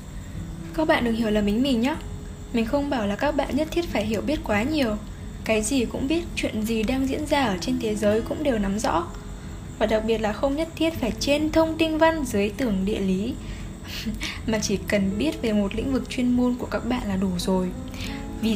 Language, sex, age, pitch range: Vietnamese, female, 10-29, 210-285 Hz